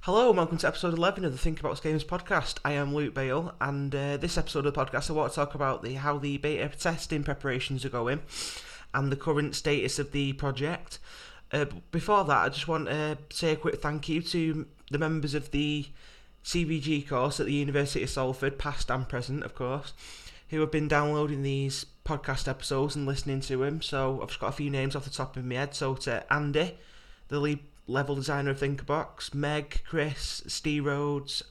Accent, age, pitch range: British, 20-39, 135-155 Hz